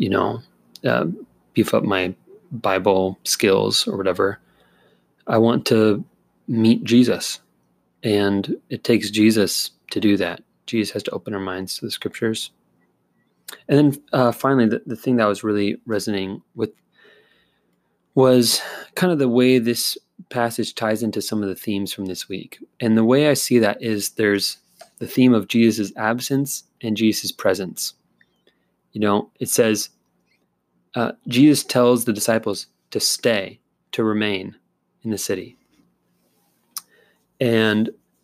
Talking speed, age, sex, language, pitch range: 145 wpm, 30-49, male, English, 105-125 Hz